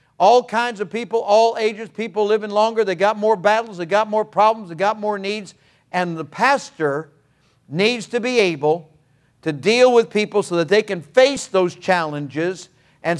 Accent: American